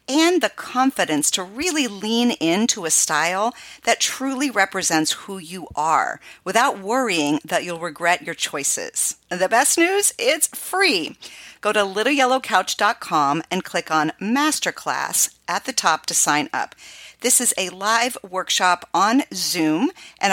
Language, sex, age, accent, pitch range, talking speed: English, female, 50-69, American, 170-245 Hz, 140 wpm